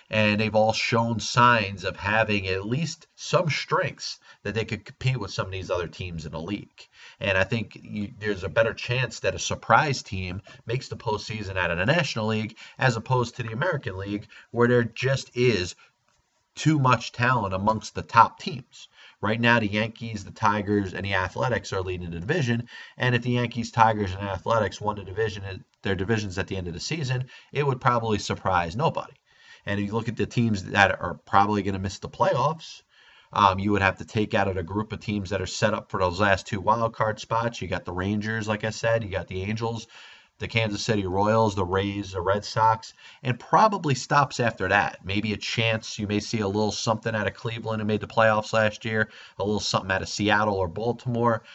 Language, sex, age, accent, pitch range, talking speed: English, male, 30-49, American, 100-120 Hz, 215 wpm